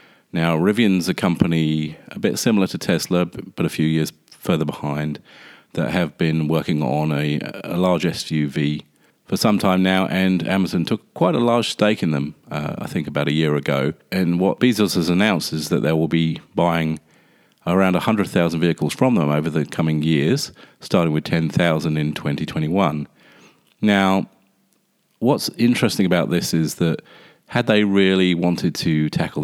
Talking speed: 165 wpm